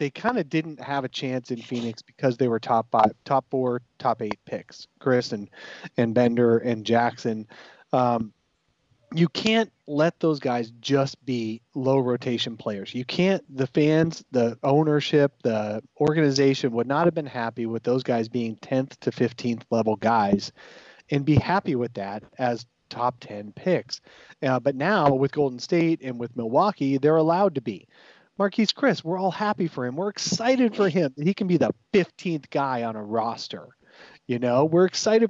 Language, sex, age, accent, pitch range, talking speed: English, male, 30-49, American, 120-160 Hz, 180 wpm